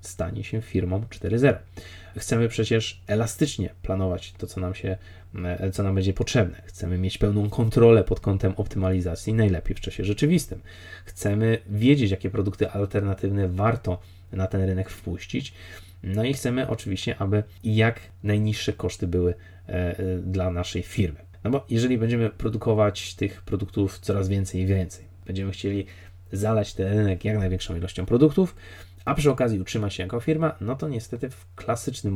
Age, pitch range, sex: 20-39, 90-110 Hz, male